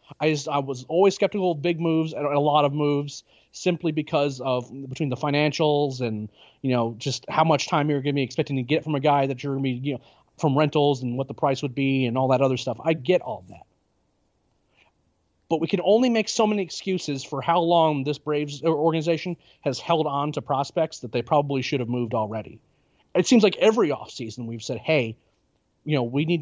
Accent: American